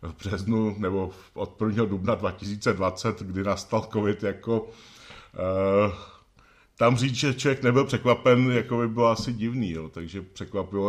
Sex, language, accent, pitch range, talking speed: male, Czech, native, 95-115 Hz, 140 wpm